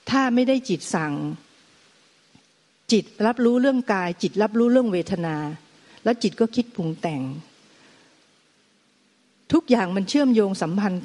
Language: Thai